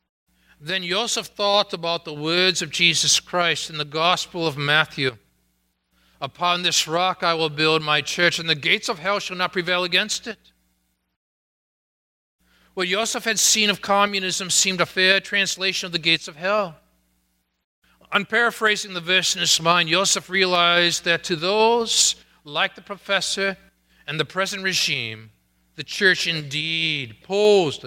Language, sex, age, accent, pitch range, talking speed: English, male, 40-59, American, 130-190 Hz, 150 wpm